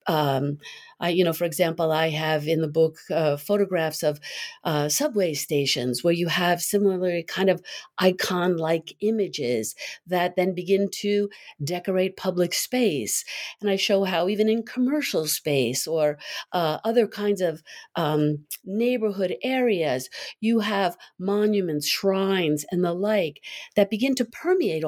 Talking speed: 140 wpm